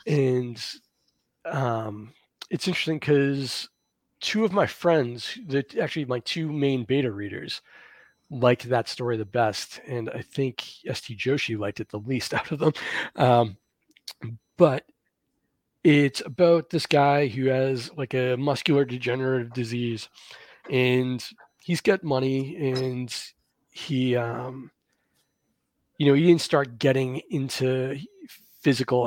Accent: American